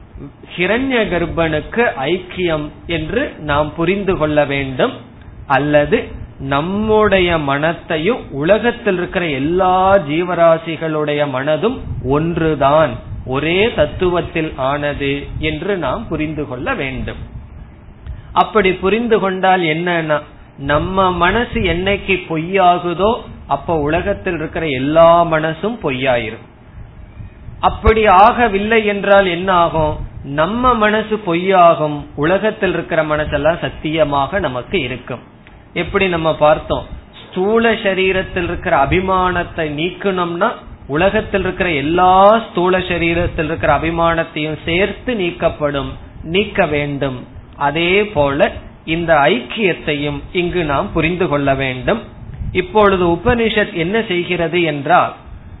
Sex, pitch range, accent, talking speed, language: male, 145-190 Hz, native, 90 wpm, Tamil